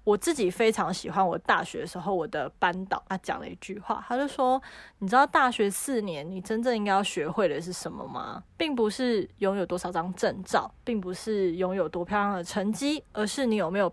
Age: 20-39